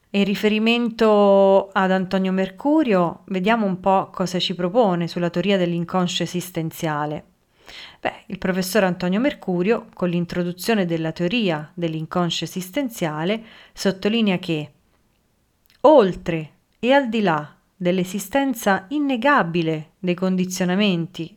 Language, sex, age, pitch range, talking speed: Italian, female, 30-49, 170-210 Hz, 105 wpm